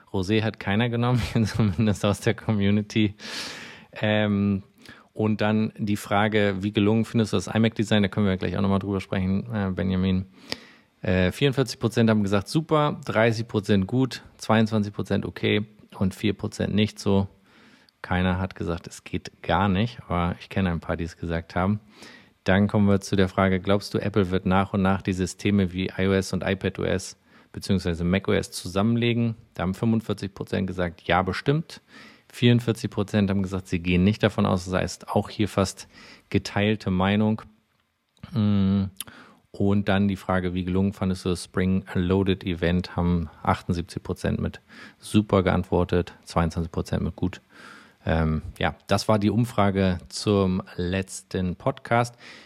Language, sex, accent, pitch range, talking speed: German, male, German, 95-110 Hz, 145 wpm